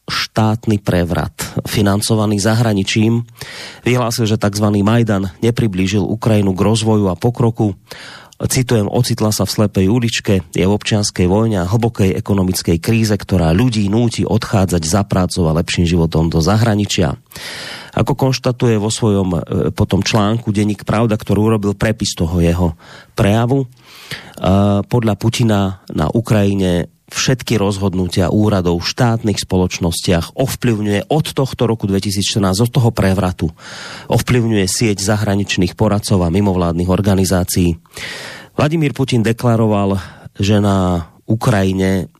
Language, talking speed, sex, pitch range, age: Slovak, 120 wpm, male, 95-115 Hz, 30-49